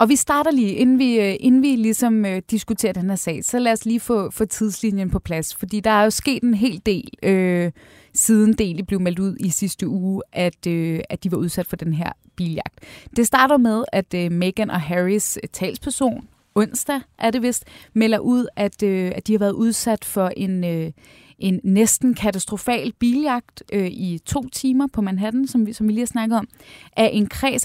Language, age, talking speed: Danish, 20-39, 205 wpm